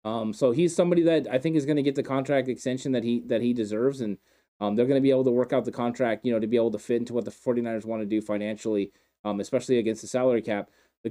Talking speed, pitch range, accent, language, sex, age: 285 wpm, 115-130 Hz, American, English, male, 20-39